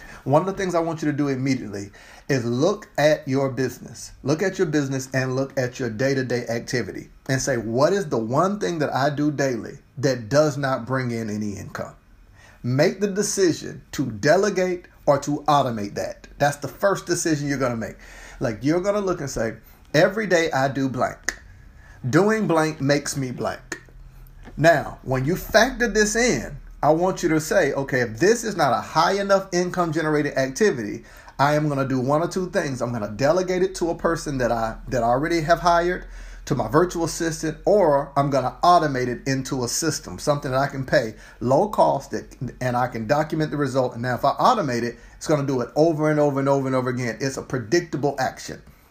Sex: male